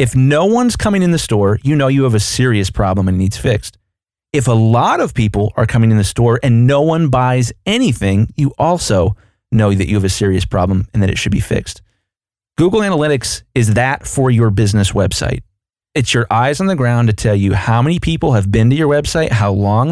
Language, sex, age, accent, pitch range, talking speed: English, male, 30-49, American, 105-135 Hz, 225 wpm